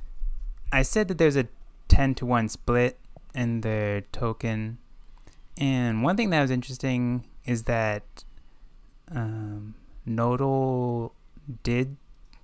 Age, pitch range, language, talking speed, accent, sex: 20-39, 105-130 Hz, English, 110 wpm, American, male